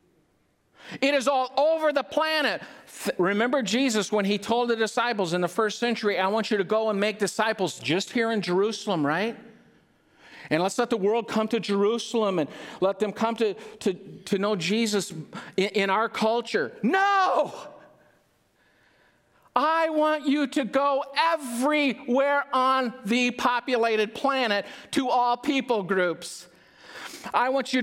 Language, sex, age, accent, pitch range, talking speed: English, male, 50-69, American, 215-270 Hz, 145 wpm